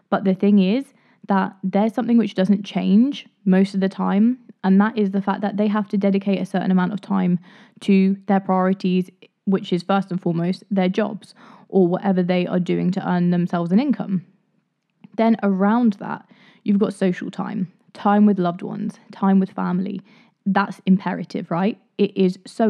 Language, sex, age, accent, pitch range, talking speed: English, female, 20-39, British, 185-210 Hz, 180 wpm